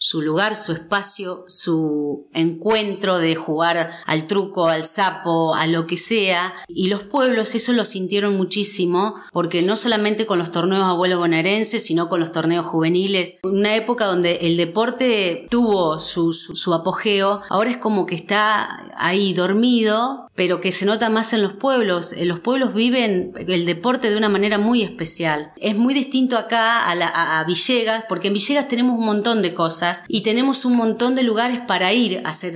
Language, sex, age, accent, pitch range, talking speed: Spanish, female, 30-49, Argentinian, 175-235 Hz, 180 wpm